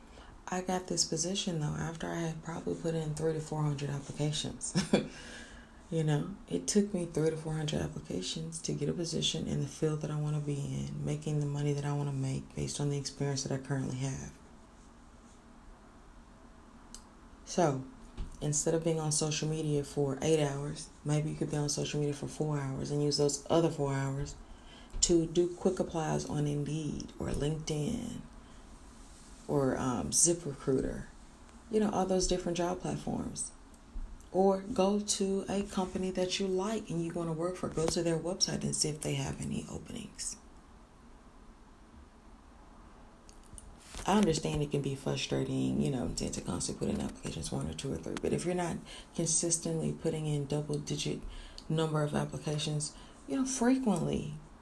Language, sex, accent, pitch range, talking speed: English, female, American, 140-180 Hz, 175 wpm